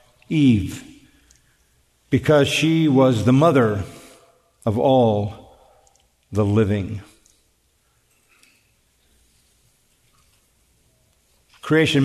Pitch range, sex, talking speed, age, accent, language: 105-155 Hz, male, 55 wpm, 50-69, American, English